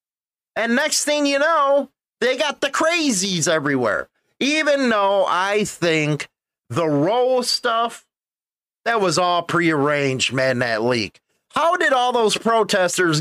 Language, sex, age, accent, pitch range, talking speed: English, male, 30-49, American, 170-250 Hz, 130 wpm